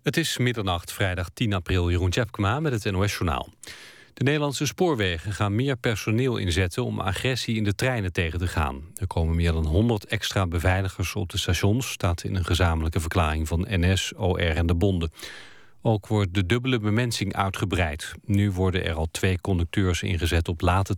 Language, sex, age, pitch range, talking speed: Dutch, male, 40-59, 90-110 Hz, 175 wpm